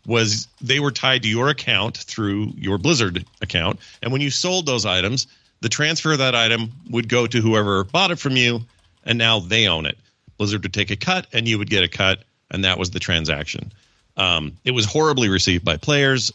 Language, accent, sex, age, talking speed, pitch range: English, American, male, 40-59, 215 wpm, 95-125 Hz